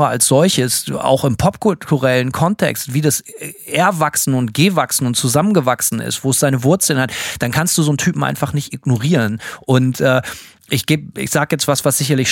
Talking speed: 180 wpm